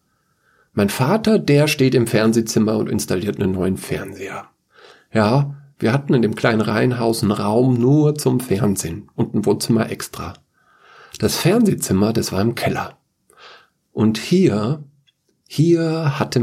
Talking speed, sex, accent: 135 wpm, male, German